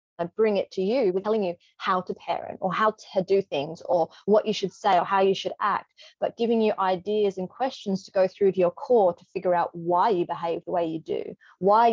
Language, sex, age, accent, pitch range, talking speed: English, female, 20-39, Australian, 180-215 Hz, 245 wpm